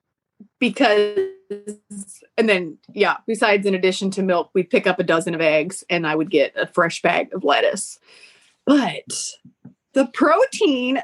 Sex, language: female, English